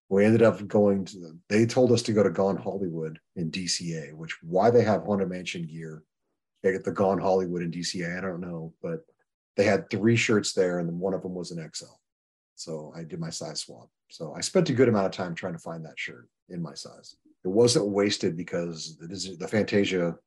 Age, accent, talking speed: 30-49, American, 225 wpm